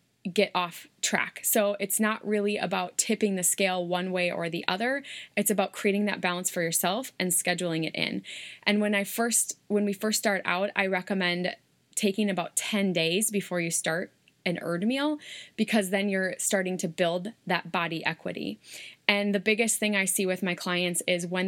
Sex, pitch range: female, 180-210 Hz